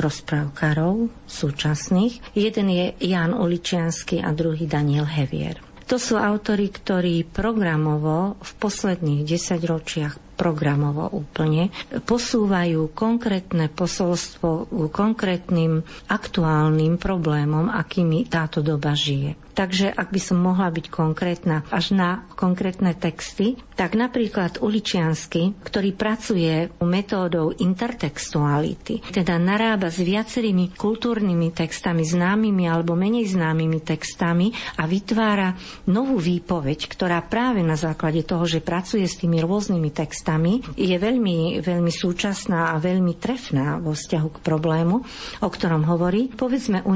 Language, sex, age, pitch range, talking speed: Slovak, female, 50-69, 165-205 Hz, 120 wpm